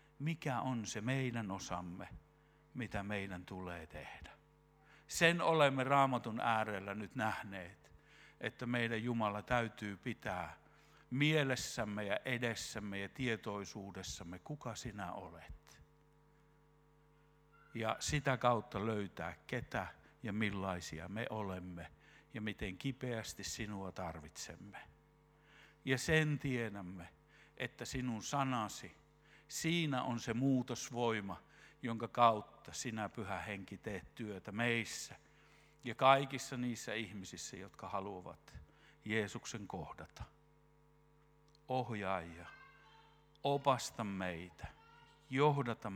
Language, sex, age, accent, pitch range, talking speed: Finnish, male, 60-79, native, 100-140 Hz, 95 wpm